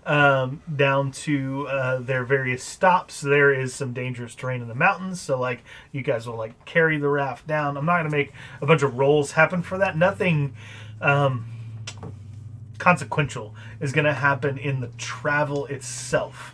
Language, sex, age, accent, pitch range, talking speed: English, male, 30-49, American, 125-150 Hz, 175 wpm